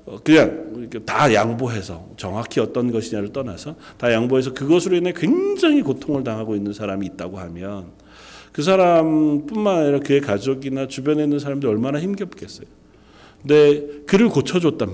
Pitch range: 110-180 Hz